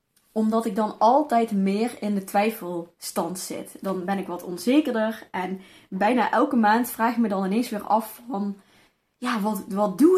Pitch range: 195-250 Hz